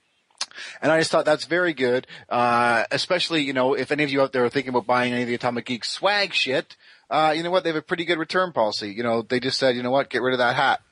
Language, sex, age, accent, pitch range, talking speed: English, male, 30-49, American, 125-160 Hz, 285 wpm